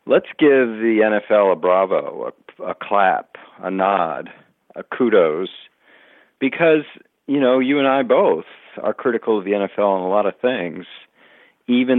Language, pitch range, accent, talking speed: English, 105-150 Hz, American, 155 wpm